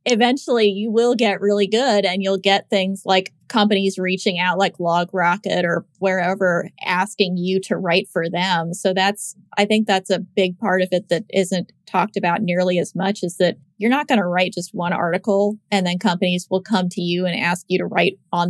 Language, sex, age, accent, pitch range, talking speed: English, female, 30-49, American, 175-200 Hz, 210 wpm